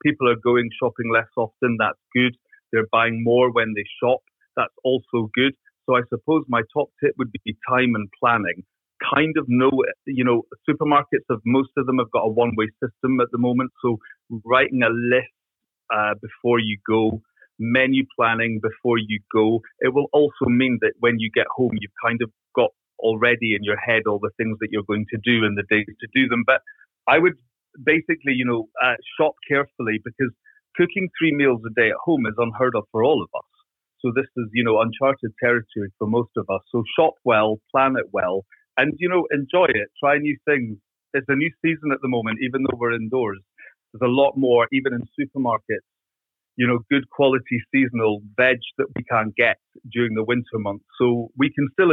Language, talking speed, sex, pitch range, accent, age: English, 200 wpm, male, 115-135 Hz, British, 30-49